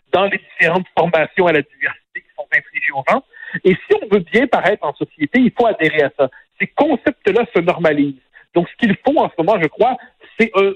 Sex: male